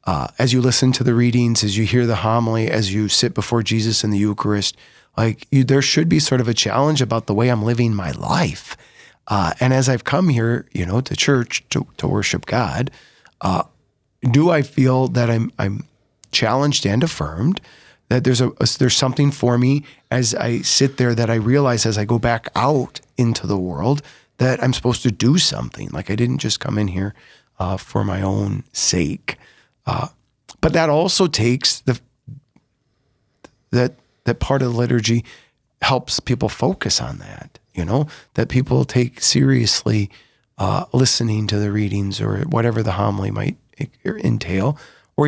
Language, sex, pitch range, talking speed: English, male, 110-135 Hz, 180 wpm